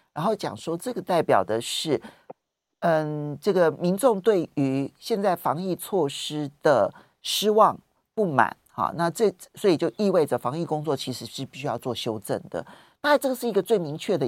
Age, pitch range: 50-69, 140-185 Hz